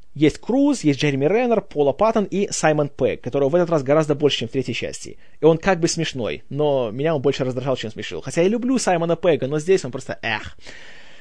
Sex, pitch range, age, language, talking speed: male, 145-215 Hz, 20-39, Russian, 225 wpm